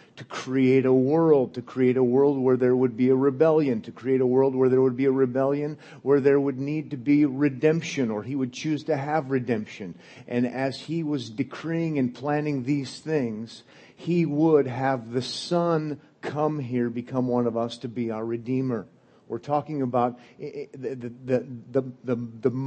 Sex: male